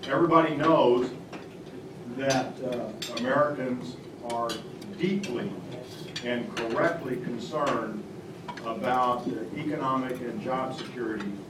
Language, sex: English, male